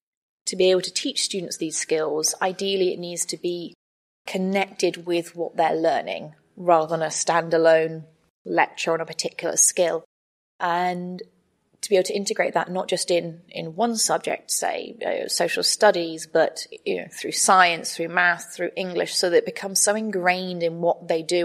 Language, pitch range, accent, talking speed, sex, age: English, 170-190 Hz, British, 175 wpm, female, 20-39